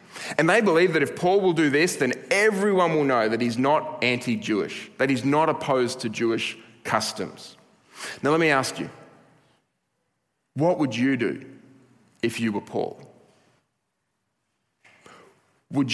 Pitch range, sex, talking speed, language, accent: 120-155 Hz, male, 145 wpm, English, Australian